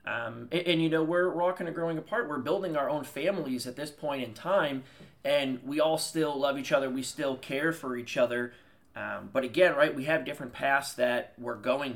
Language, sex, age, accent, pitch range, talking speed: English, male, 30-49, American, 125-150 Hz, 225 wpm